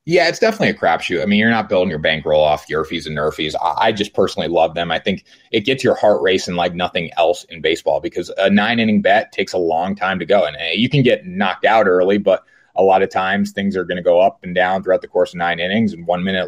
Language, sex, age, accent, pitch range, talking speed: English, male, 30-49, American, 90-145 Hz, 270 wpm